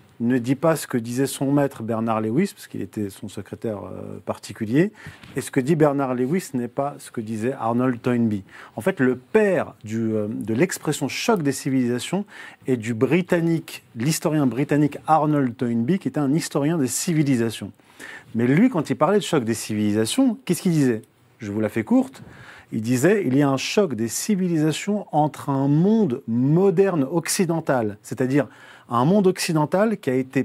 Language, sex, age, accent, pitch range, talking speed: French, male, 40-59, French, 125-185 Hz, 185 wpm